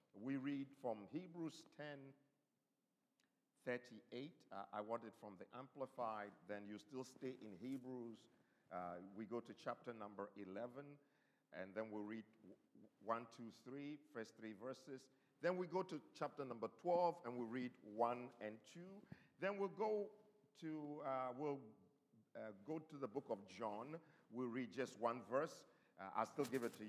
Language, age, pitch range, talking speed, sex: English, 50-69, 110-145 Hz, 165 wpm, male